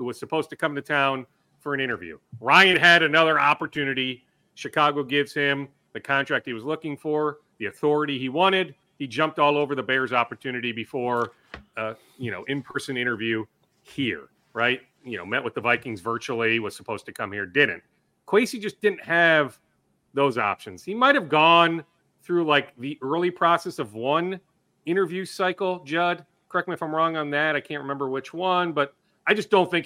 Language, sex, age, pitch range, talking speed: English, male, 40-59, 140-185 Hz, 185 wpm